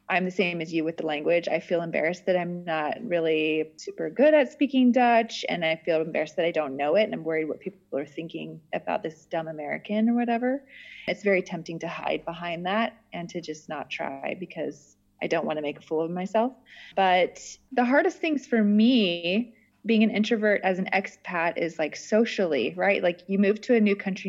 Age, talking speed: 20-39, 215 wpm